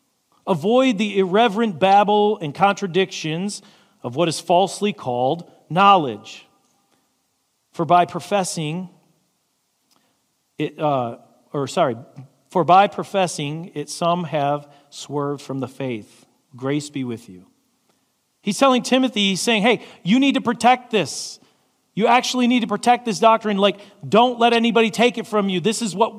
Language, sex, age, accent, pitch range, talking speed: English, male, 40-59, American, 160-220 Hz, 140 wpm